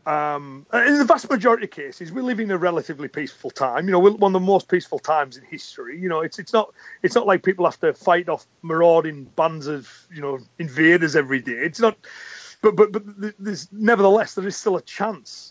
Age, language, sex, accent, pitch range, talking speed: 30-49, English, male, British, 155-200 Hz, 225 wpm